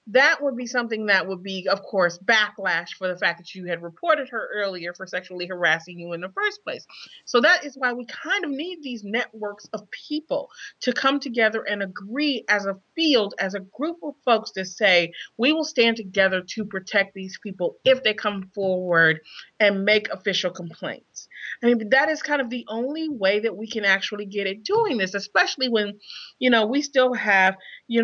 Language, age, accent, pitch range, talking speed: English, 30-49, American, 195-285 Hz, 205 wpm